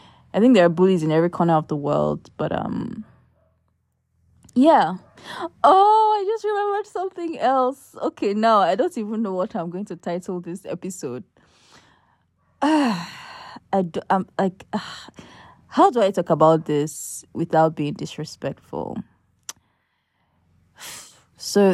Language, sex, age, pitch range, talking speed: English, female, 20-39, 160-250 Hz, 135 wpm